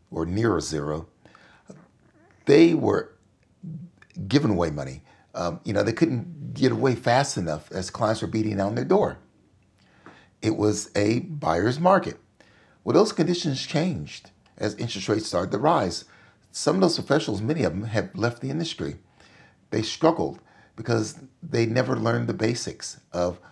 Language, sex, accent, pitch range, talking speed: English, male, American, 95-125 Hz, 155 wpm